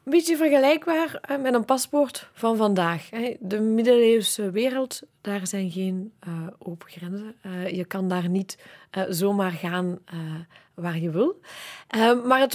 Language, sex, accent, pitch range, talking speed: Dutch, female, Dutch, 195-255 Hz, 155 wpm